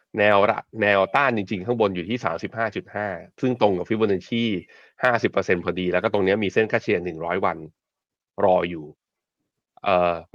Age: 20-39